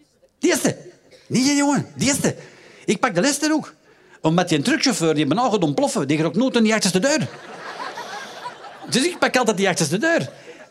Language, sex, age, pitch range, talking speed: Dutch, male, 50-69, 160-255 Hz, 195 wpm